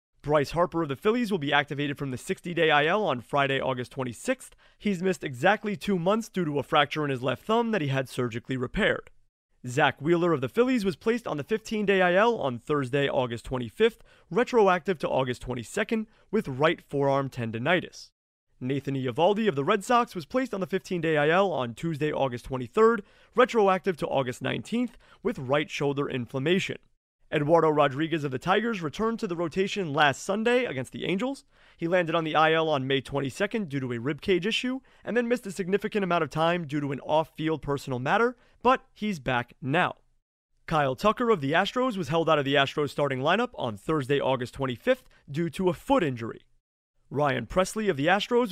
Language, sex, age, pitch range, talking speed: English, male, 30-49, 135-205 Hz, 190 wpm